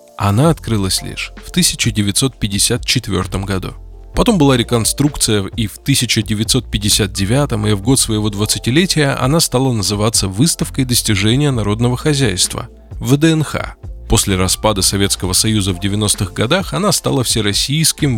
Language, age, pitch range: Russian, 20-39, 100-130 Hz